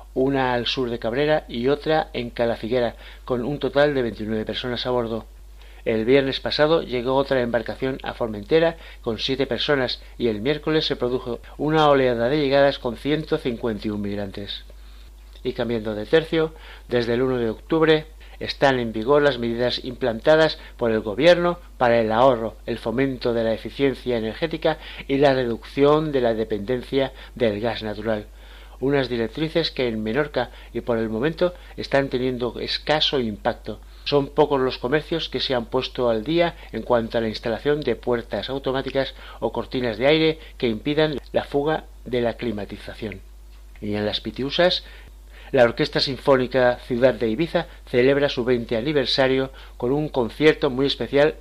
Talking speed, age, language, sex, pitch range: 160 wpm, 60-79, Spanish, male, 115-145 Hz